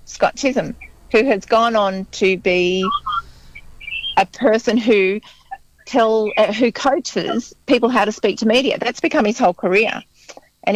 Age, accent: 40-59, Australian